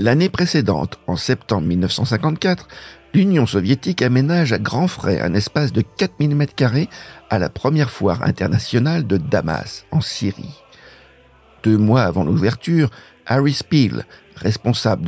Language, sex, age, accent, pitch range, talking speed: French, male, 60-79, French, 100-150 Hz, 130 wpm